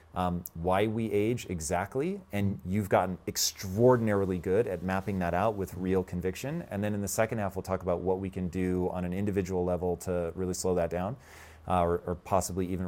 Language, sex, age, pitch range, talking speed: English, male, 30-49, 85-100 Hz, 205 wpm